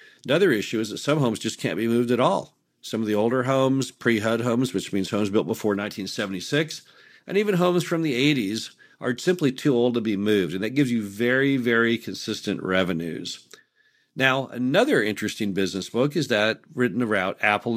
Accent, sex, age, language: American, male, 50-69, English